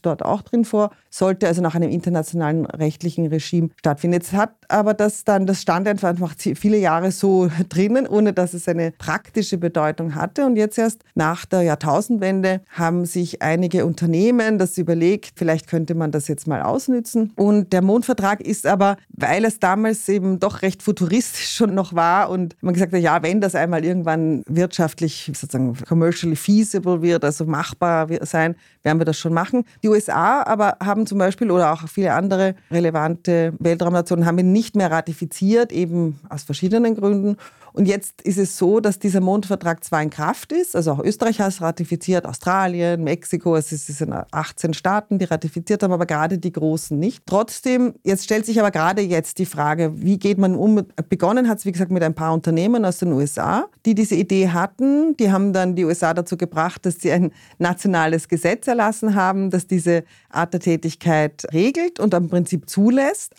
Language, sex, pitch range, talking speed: German, female, 165-205 Hz, 185 wpm